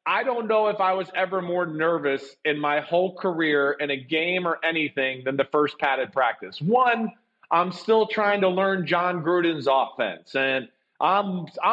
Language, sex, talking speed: English, male, 175 wpm